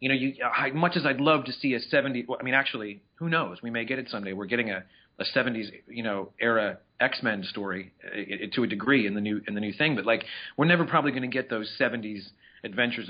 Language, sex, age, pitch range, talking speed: English, male, 40-59, 105-135 Hz, 240 wpm